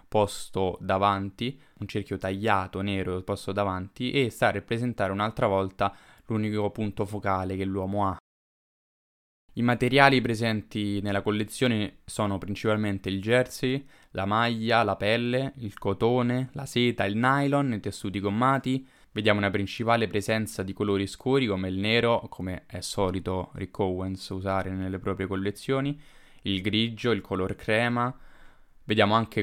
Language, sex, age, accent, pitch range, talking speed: Italian, male, 10-29, native, 95-115 Hz, 140 wpm